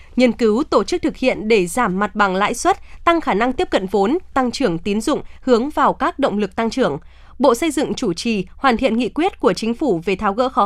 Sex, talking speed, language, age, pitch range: female, 255 wpm, Vietnamese, 20-39, 210-275 Hz